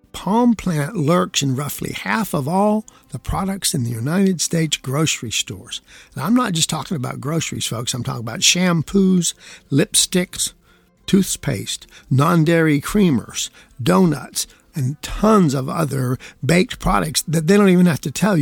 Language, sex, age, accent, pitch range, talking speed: English, male, 50-69, American, 130-180 Hz, 155 wpm